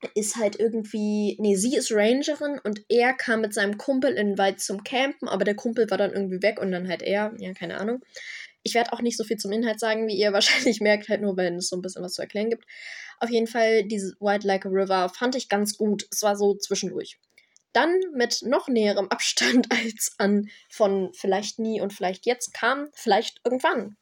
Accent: German